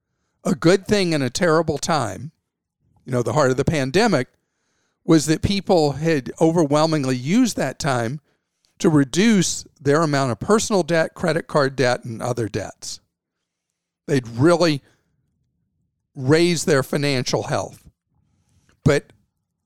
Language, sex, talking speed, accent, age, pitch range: English, male, 130 wpm, American, 50-69, 130-180 Hz